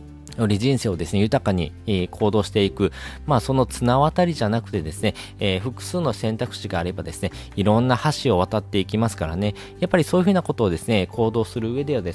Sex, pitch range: male, 95-125 Hz